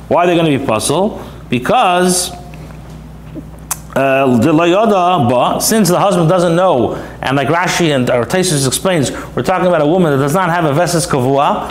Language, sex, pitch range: English, male, 140-185 Hz